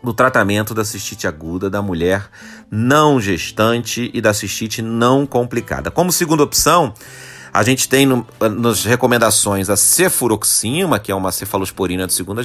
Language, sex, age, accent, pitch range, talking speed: Portuguese, male, 30-49, Brazilian, 105-140 Hz, 145 wpm